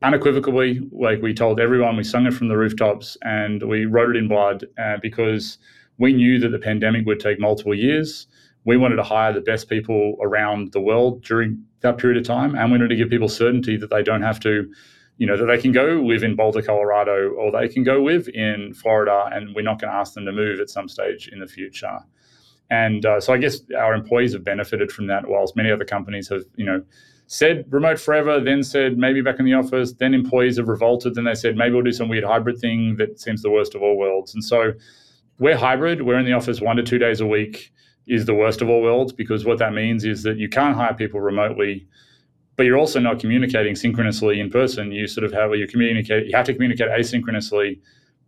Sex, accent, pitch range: male, Australian, 105-125 Hz